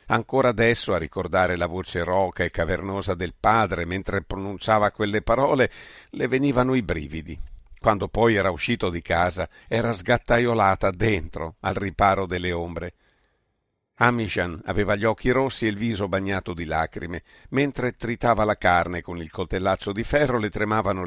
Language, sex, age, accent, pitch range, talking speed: Italian, male, 50-69, native, 90-120 Hz, 155 wpm